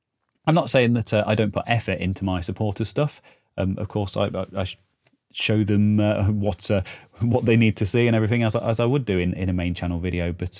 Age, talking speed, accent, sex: 30-49, 245 wpm, British, male